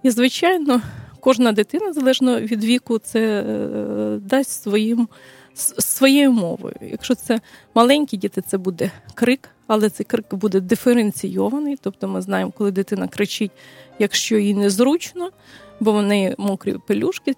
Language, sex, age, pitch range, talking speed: Ukrainian, female, 20-39, 200-245 Hz, 130 wpm